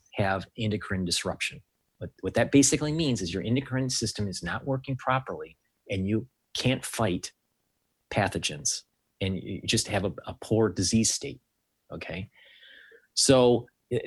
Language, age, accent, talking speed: English, 40-59, American, 135 wpm